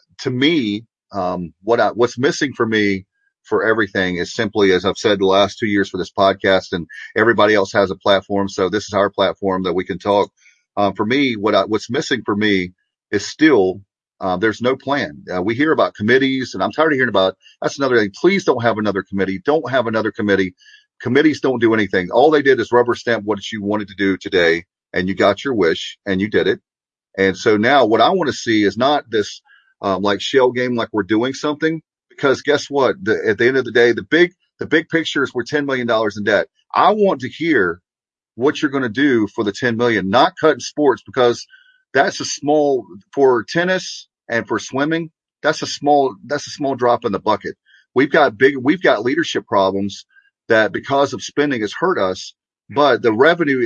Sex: male